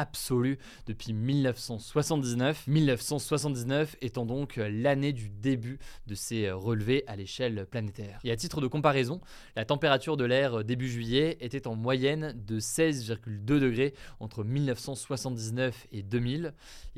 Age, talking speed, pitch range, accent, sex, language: 20-39, 125 wpm, 115-135 Hz, French, male, French